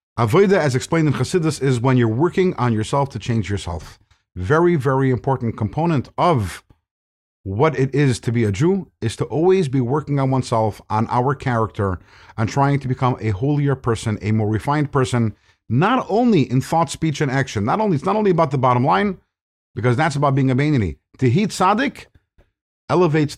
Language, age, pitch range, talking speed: English, 50-69, 110-155 Hz, 185 wpm